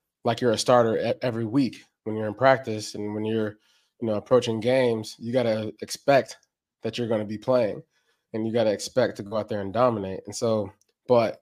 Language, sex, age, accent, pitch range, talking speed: English, male, 20-39, American, 110-125 Hz, 215 wpm